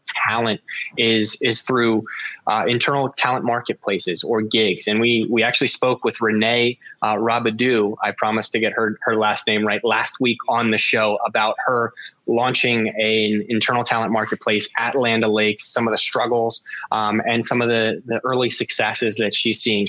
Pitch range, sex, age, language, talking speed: 110-120 Hz, male, 20-39, English, 180 wpm